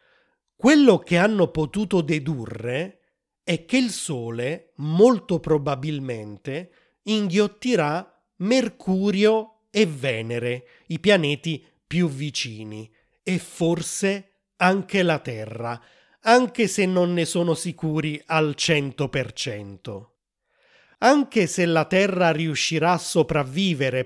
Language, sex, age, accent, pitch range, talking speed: Italian, male, 30-49, native, 145-190 Hz, 95 wpm